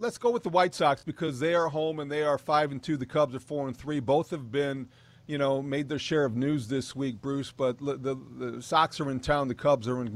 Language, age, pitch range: English, 40-59, 130-150 Hz